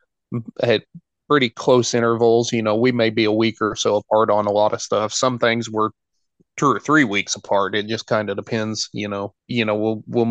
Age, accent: 30-49, American